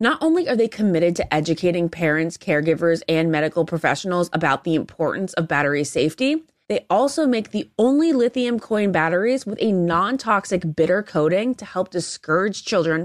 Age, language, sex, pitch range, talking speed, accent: 20-39, English, female, 160-220 Hz, 160 wpm, American